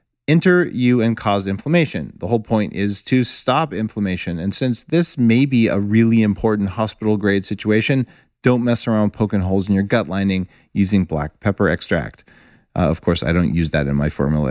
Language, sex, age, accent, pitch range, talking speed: English, male, 40-59, American, 105-135 Hz, 190 wpm